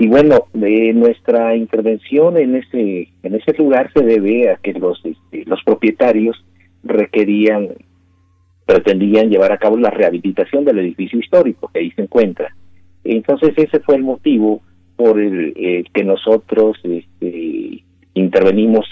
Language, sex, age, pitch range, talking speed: Spanish, male, 50-69, 90-135 Hz, 140 wpm